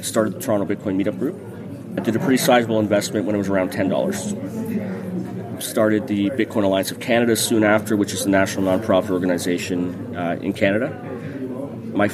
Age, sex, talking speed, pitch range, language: 30-49, male, 180 wpm, 95-110 Hz, English